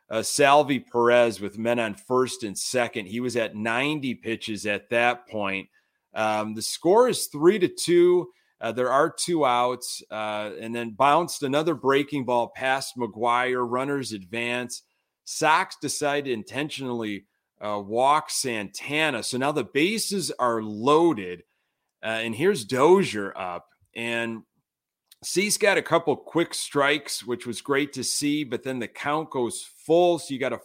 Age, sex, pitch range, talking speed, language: 30-49, male, 115-145 Hz, 155 wpm, English